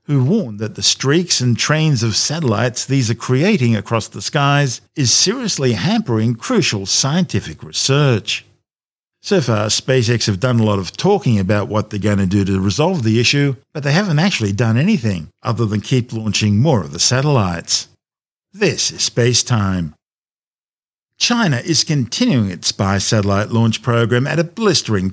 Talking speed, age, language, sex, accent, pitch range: 165 wpm, 50-69, English, male, Australian, 105-140 Hz